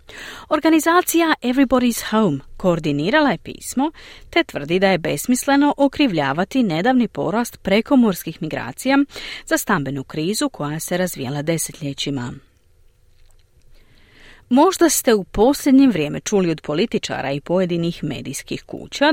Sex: female